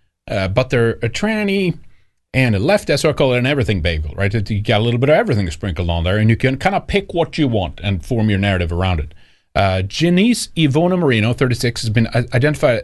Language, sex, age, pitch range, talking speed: English, male, 40-59, 95-135 Hz, 220 wpm